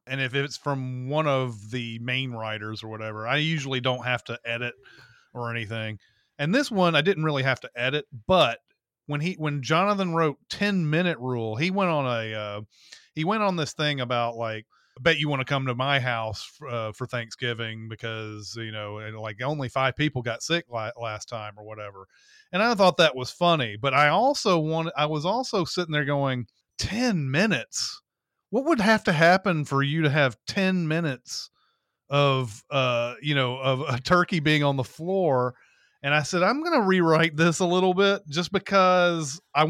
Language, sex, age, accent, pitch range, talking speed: English, male, 30-49, American, 125-175 Hz, 195 wpm